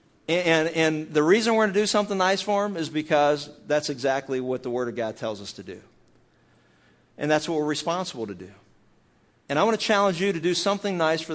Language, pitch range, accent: English, 125-150 Hz, American